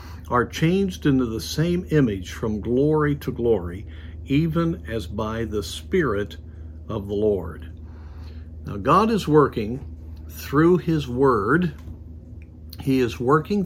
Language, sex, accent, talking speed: English, male, American, 125 wpm